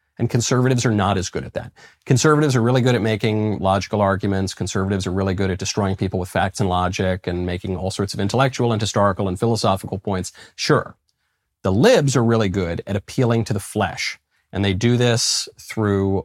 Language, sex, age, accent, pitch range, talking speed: English, male, 40-59, American, 95-125 Hz, 200 wpm